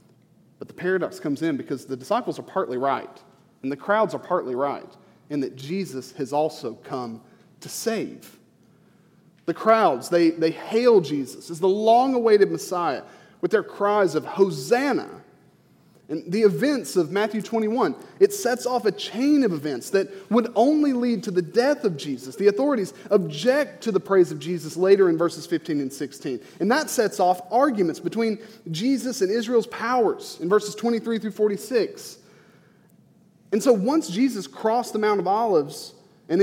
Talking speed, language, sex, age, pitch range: 170 wpm, English, male, 30-49, 145-220 Hz